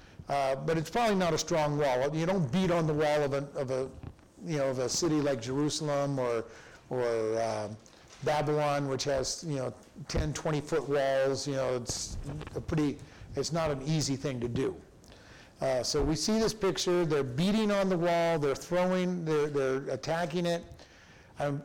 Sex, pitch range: male, 145-180 Hz